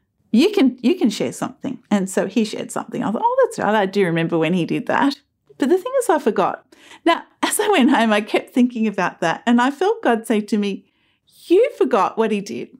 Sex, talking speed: female, 240 wpm